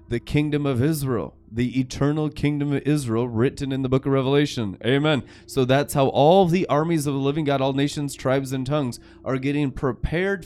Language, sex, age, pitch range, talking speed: English, male, 30-49, 130-150 Hz, 195 wpm